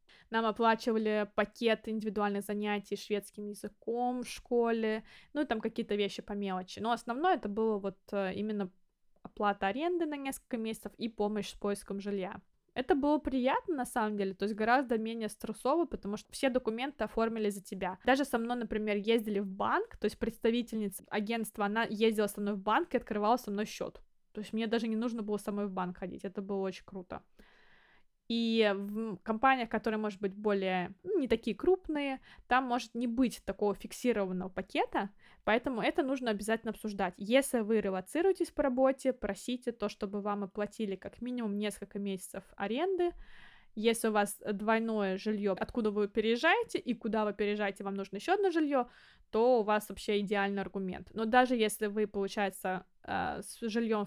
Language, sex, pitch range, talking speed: Russian, female, 205-240 Hz, 175 wpm